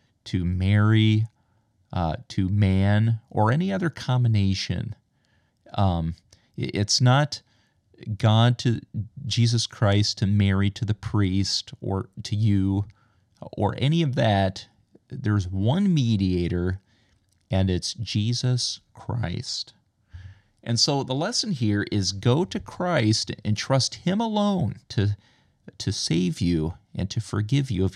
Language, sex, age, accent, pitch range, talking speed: English, male, 40-59, American, 95-120 Hz, 120 wpm